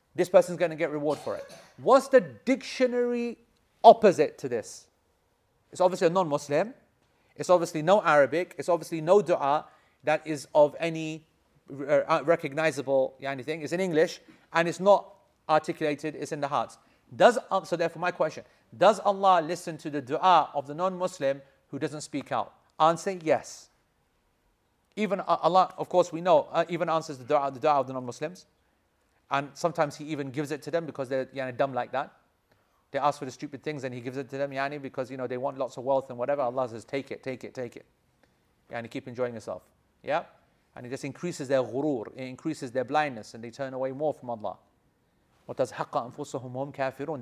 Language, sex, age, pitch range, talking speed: English, male, 40-59, 130-165 Hz, 195 wpm